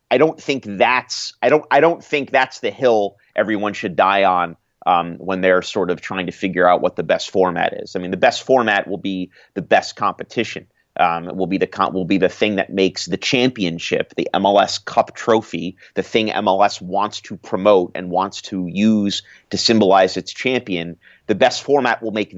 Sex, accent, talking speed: male, American, 205 wpm